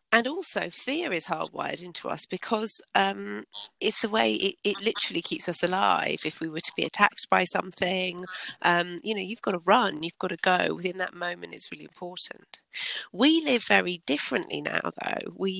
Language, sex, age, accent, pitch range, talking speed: English, female, 30-49, British, 170-215 Hz, 190 wpm